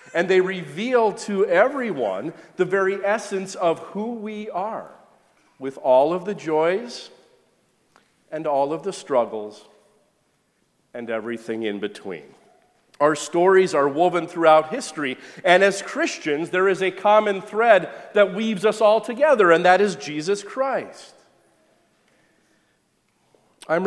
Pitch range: 155-215 Hz